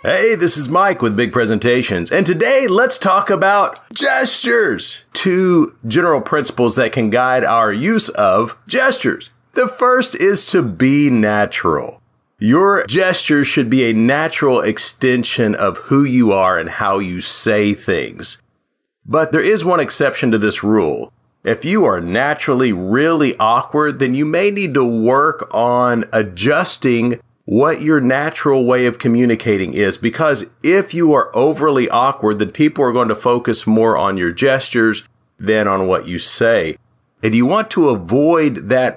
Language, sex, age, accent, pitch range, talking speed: English, male, 40-59, American, 115-155 Hz, 155 wpm